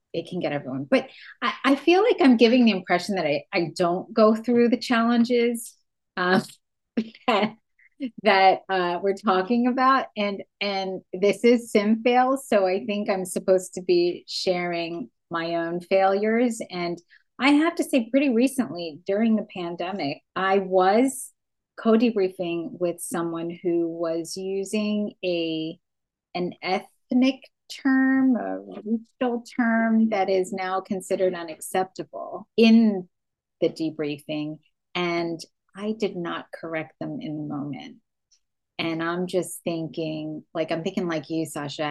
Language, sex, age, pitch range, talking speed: English, female, 30-49, 165-220 Hz, 135 wpm